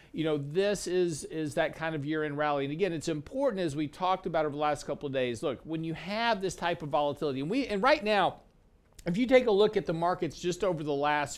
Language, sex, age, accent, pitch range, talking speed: English, male, 50-69, American, 155-190 Hz, 265 wpm